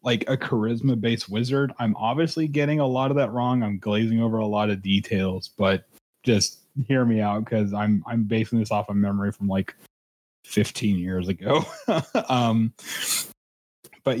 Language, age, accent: English, 30-49, American